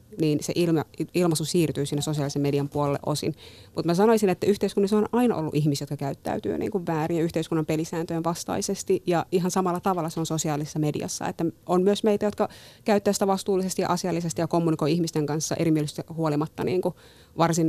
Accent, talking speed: native, 185 wpm